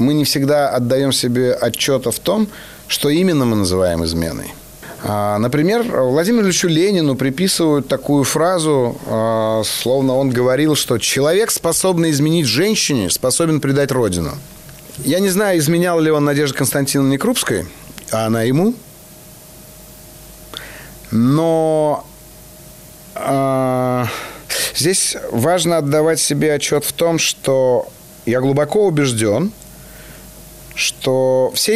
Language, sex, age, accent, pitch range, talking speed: Russian, male, 30-49, native, 125-160 Hz, 115 wpm